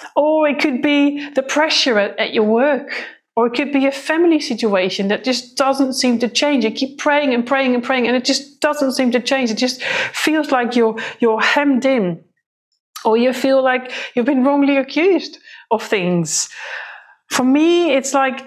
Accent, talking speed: British, 190 wpm